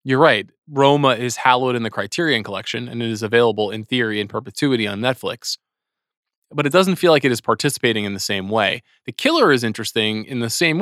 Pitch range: 115-145 Hz